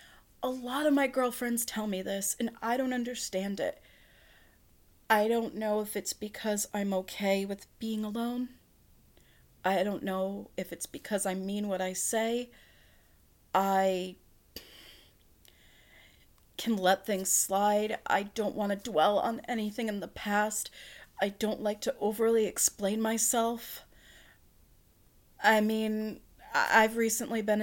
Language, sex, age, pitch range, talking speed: English, female, 30-49, 195-230 Hz, 135 wpm